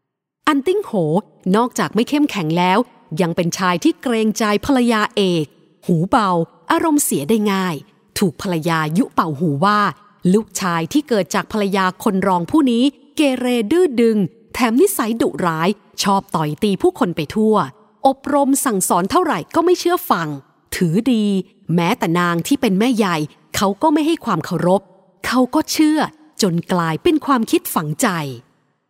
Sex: female